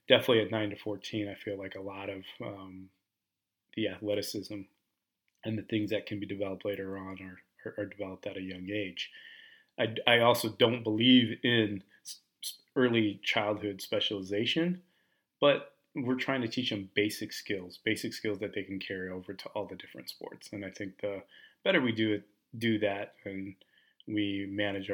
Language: English